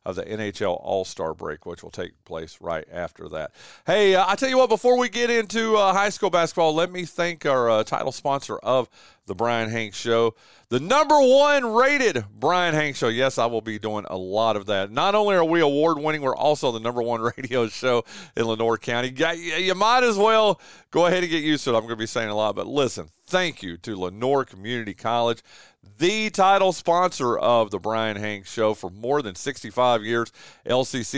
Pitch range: 110-165 Hz